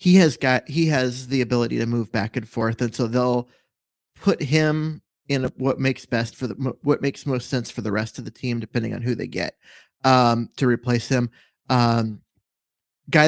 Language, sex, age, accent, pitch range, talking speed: English, male, 30-49, American, 120-135 Hz, 200 wpm